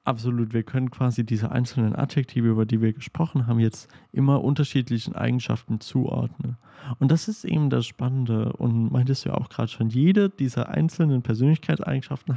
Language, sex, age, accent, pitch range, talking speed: German, male, 30-49, German, 115-145 Hz, 165 wpm